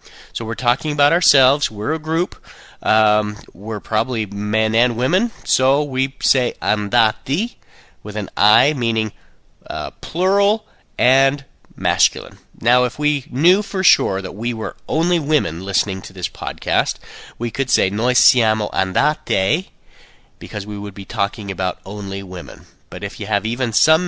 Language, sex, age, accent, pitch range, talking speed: Italian, male, 30-49, American, 100-150 Hz, 150 wpm